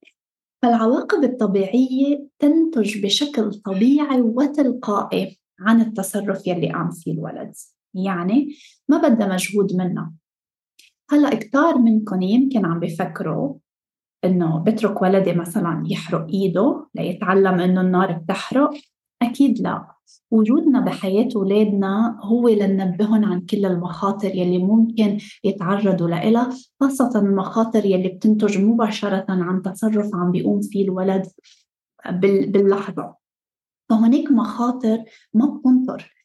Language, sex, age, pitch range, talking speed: English, female, 20-39, 190-235 Hz, 105 wpm